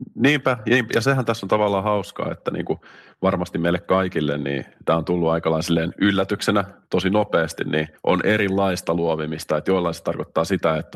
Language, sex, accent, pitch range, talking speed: Finnish, male, native, 80-95 Hz, 165 wpm